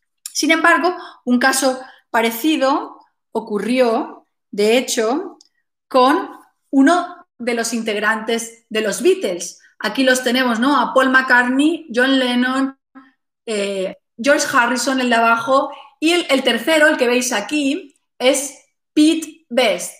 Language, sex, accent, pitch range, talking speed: Spanish, female, Spanish, 225-295 Hz, 125 wpm